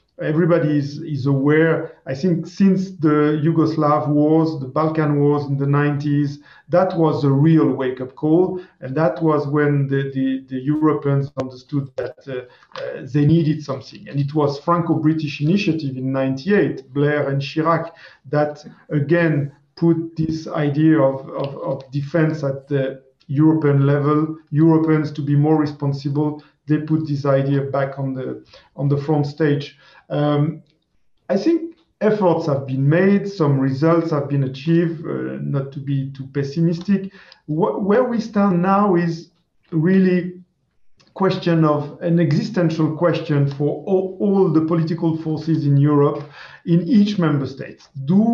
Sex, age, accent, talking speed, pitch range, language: male, 40-59, French, 145 wpm, 140-165 Hz, English